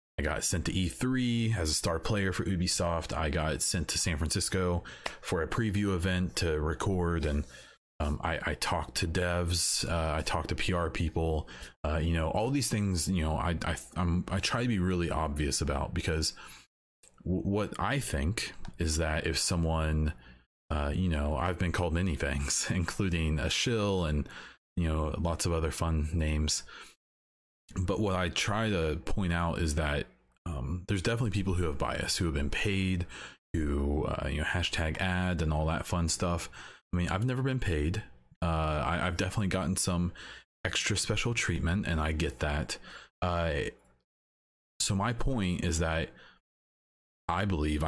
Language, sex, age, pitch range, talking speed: English, male, 30-49, 75-95 Hz, 175 wpm